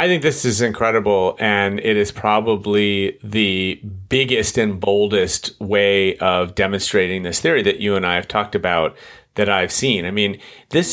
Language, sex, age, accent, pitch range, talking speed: English, male, 30-49, American, 100-115 Hz, 170 wpm